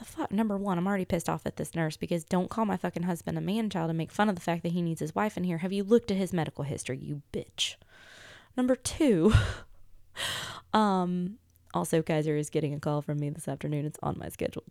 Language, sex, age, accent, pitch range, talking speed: English, female, 20-39, American, 155-200 Hz, 235 wpm